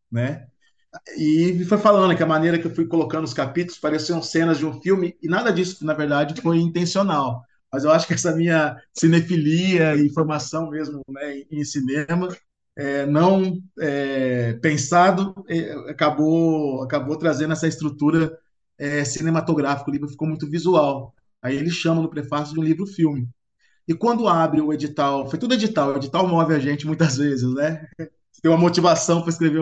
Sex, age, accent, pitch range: male, 20-39, Brazilian, 130-170 Hz